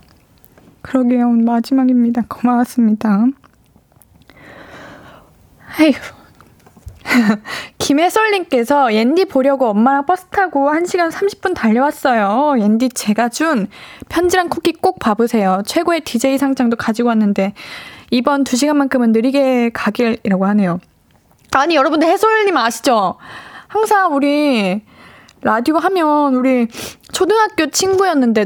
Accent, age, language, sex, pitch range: native, 20-39, Korean, female, 235-330 Hz